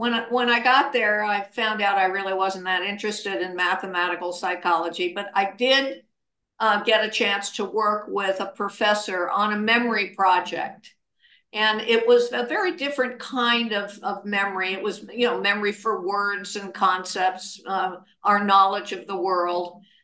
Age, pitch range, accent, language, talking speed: 60-79, 190-230 Hz, American, English, 170 wpm